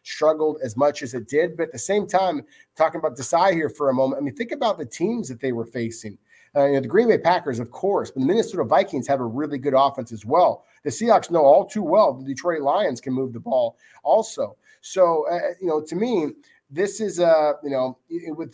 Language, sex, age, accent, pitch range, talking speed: English, male, 30-49, American, 135-170 Hz, 250 wpm